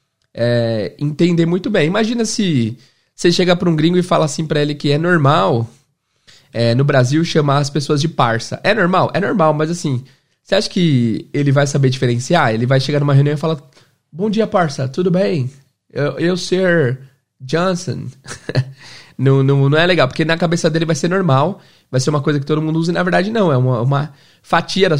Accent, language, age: Brazilian, Portuguese, 20-39